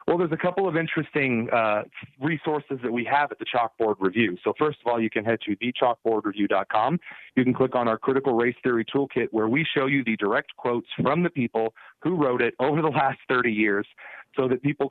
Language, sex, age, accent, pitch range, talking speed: English, male, 30-49, American, 115-145 Hz, 215 wpm